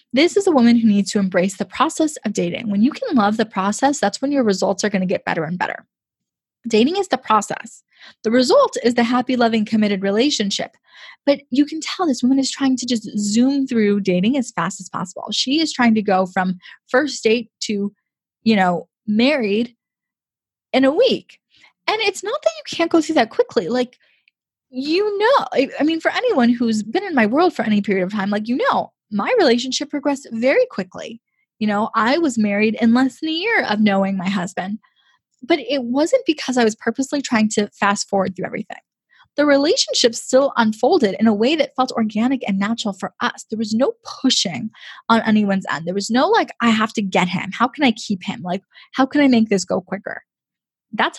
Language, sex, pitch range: English, female, 205-275 Hz